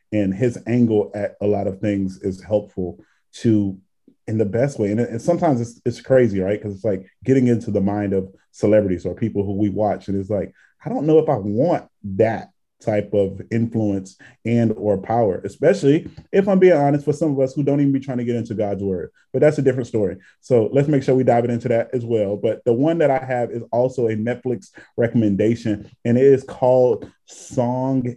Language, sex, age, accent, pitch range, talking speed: English, male, 20-39, American, 110-135 Hz, 215 wpm